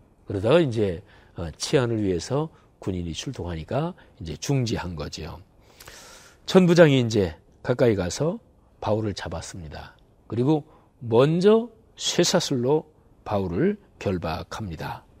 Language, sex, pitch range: Korean, male, 105-160 Hz